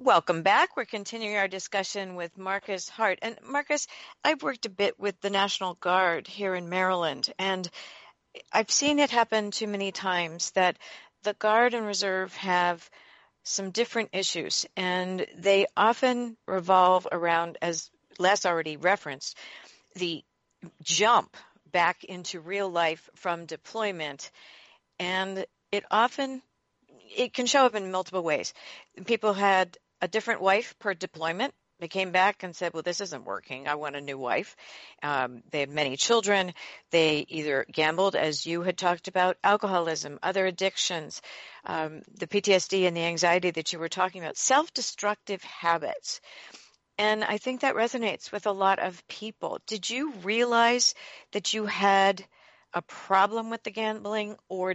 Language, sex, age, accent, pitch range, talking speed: English, female, 50-69, American, 175-210 Hz, 150 wpm